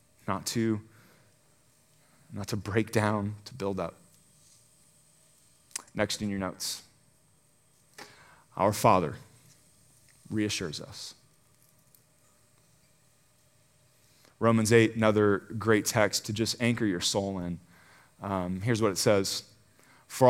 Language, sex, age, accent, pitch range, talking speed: English, male, 30-49, American, 105-130 Hz, 100 wpm